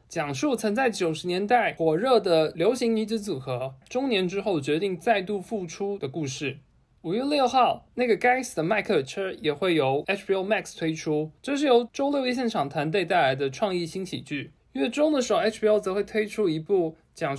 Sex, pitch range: male, 155-220 Hz